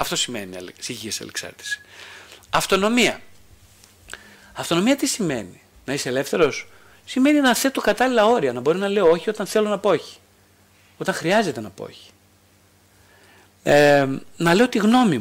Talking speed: 150 wpm